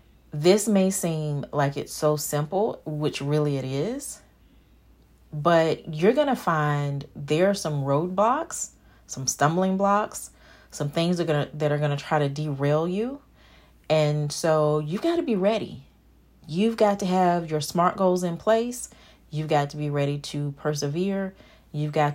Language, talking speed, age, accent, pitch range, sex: English, 155 wpm, 30-49, American, 145-190 Hz, female